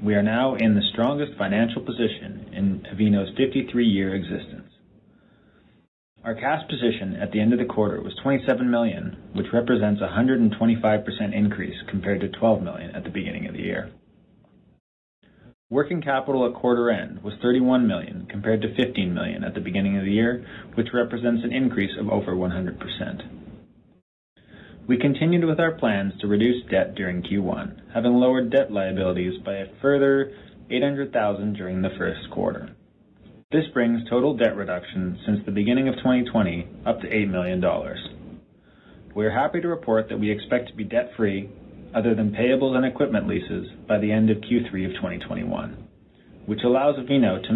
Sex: male